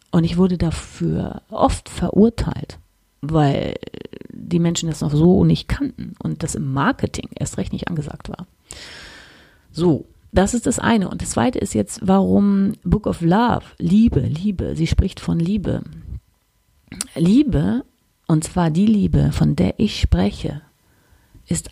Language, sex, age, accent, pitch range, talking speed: German, female, 40-59, German, 145-205 Hz, 145 wpm